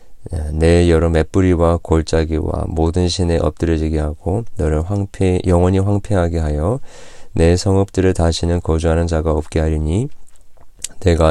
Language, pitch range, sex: Korean, 80-95 Hz, male